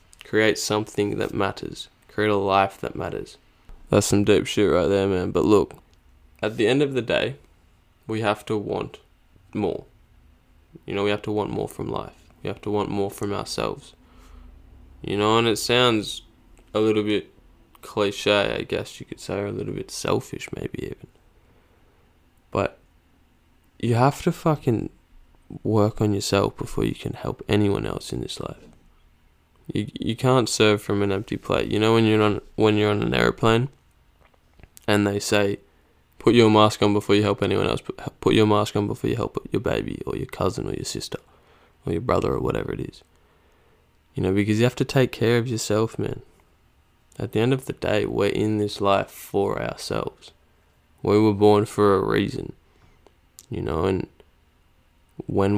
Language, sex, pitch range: English, male, 85-110 Hz